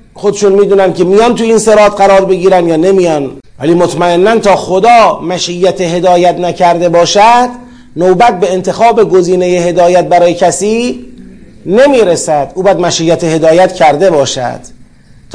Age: 40-59